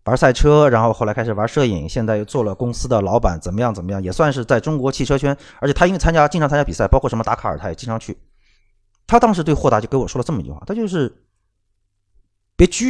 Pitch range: 100-150 Hz